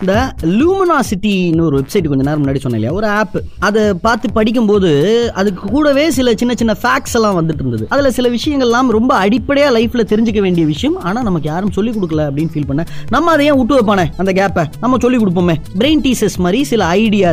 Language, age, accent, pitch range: Tamil, 20-39, native, 170-250 Hz